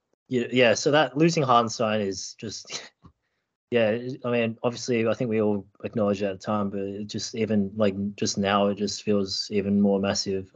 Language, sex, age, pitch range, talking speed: English, male, 20-39, 100-110 Hz, 180 wpm